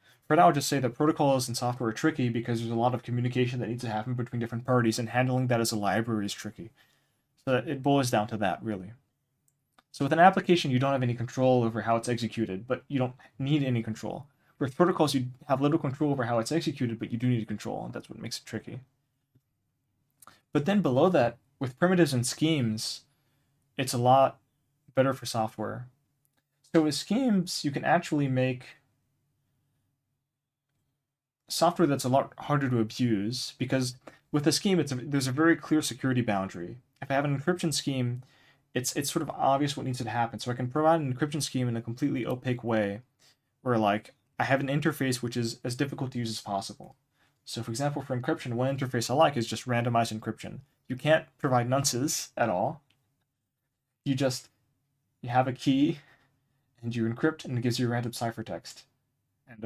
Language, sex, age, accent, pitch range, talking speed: English, male, 20-39, American, 120-140 Hz, 195 wpm